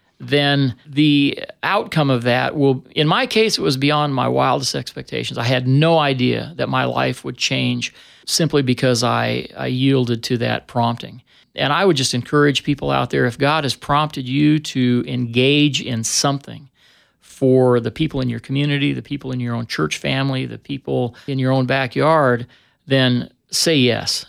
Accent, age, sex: American, 40-59, male